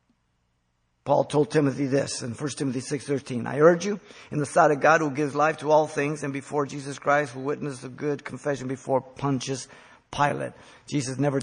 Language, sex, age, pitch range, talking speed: English, male, 50-69, 130-160 Hz, 190 wpm